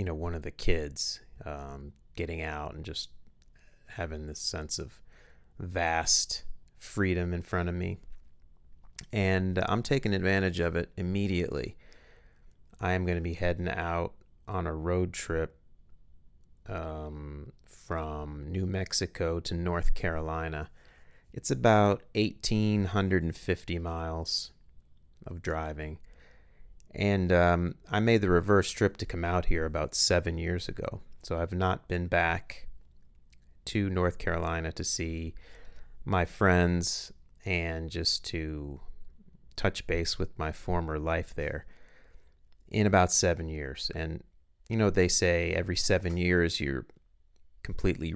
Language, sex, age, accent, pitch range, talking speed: English, male, 30-49, American, 75-90 Hz, 125 wpm